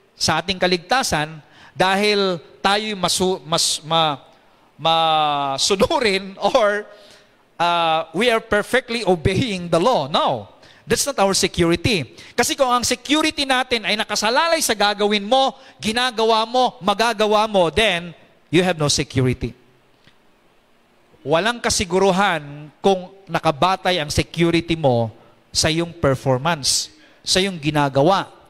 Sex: male